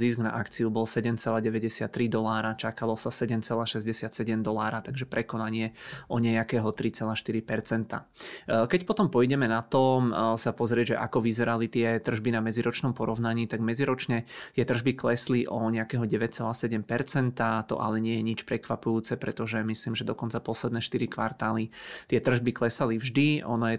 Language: Czech